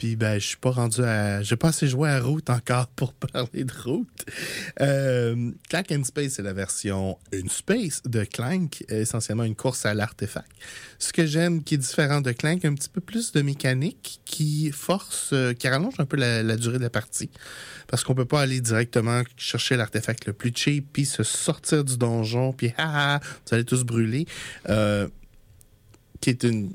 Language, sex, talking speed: French, male, 190 wpm